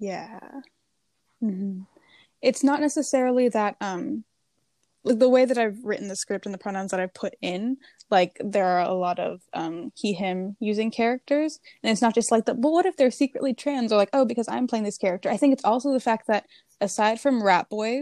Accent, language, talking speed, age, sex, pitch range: American, English, 210 wpm, 10-29, female, 190-245 Hz